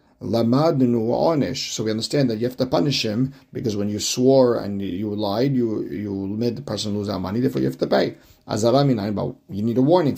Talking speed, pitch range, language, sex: 195 wpm, 110-135 Hz, English, male